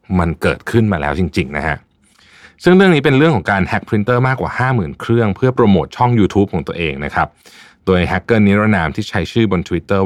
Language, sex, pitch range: Thai, male, 85-115 Hz